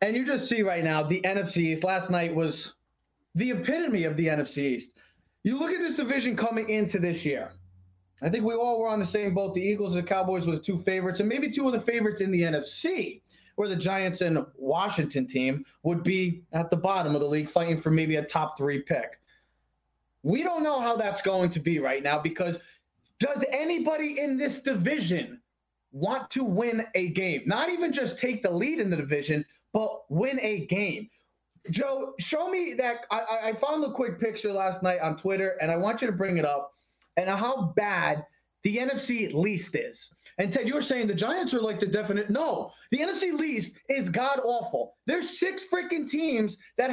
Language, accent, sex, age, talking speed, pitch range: English, American, male, 20-39, 205 wpm, 175-260 Hz